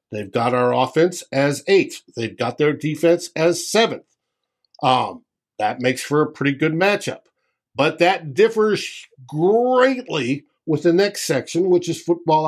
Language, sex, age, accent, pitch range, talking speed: English, male, 50-69, American, 130-170 Hz, 145 wpm